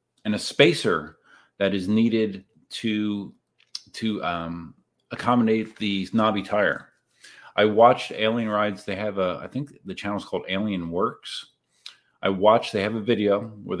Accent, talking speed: American, 150 wpm